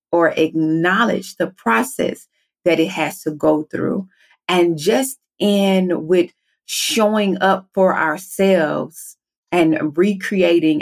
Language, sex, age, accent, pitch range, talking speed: English, female, 40-59, American, 165-200 Hz, 110 wpm